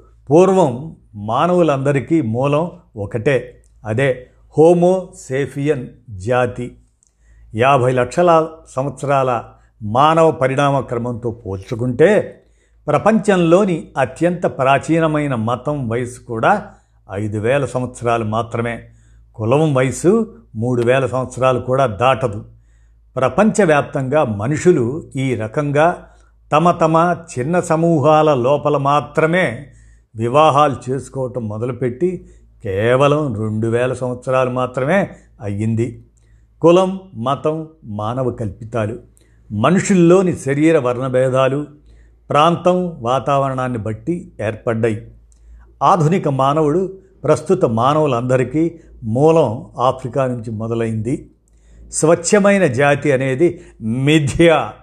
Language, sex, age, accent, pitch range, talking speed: Telugu, male, 50-69, native, 115-160 Hz, 75 wpm